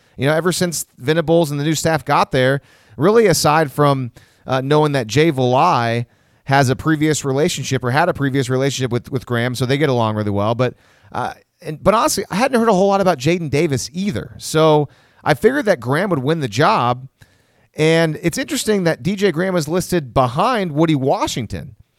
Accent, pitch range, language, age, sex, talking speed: American, 130-170 Hz, English, 30-49, male, 195 wpm